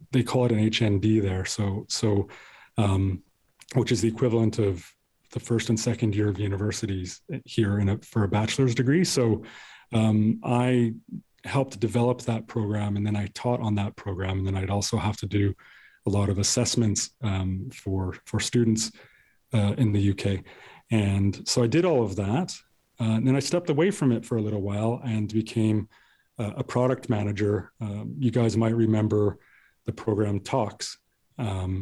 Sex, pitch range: male, 100-120 Hz